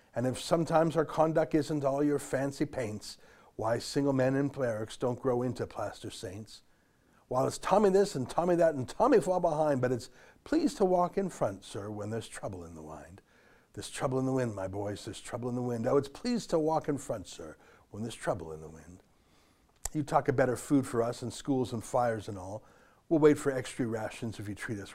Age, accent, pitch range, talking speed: 60-79, American, 110-150 Hz, 225 wpm